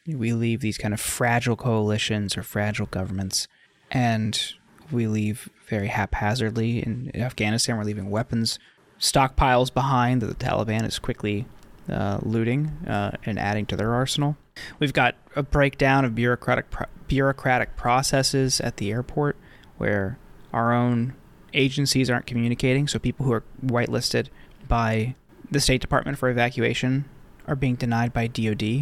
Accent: American